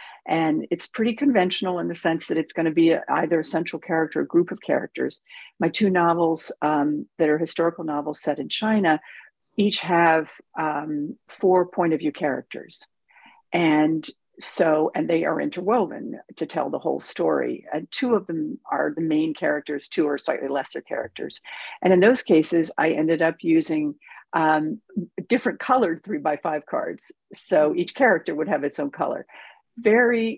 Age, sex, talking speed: 50-69, female, 170 wpm